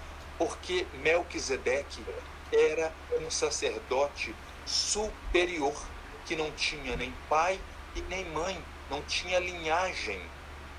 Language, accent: Portuguese, Brazilian